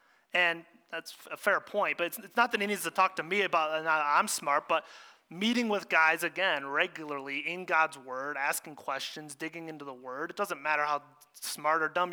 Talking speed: 210 wpm